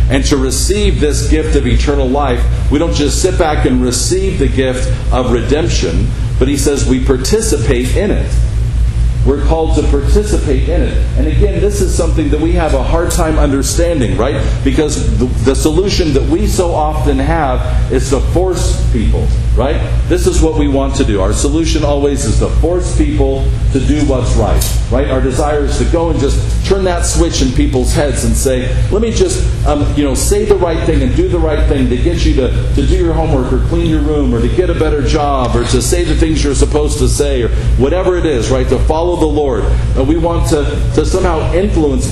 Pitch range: 115-150 Hz